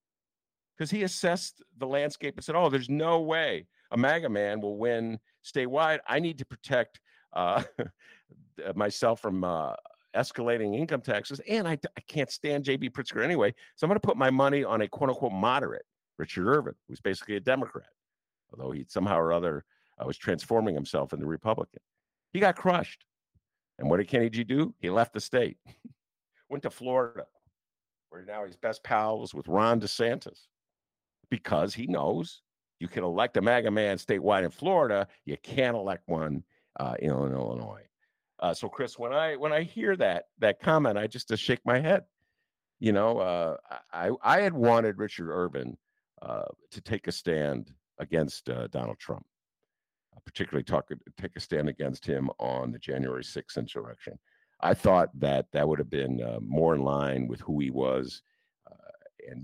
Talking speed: 175 wpm